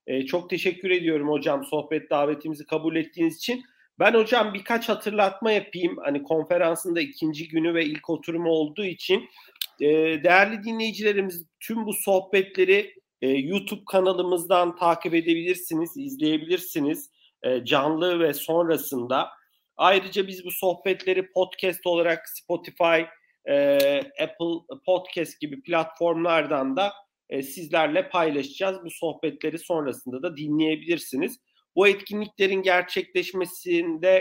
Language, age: Turkish, 40-59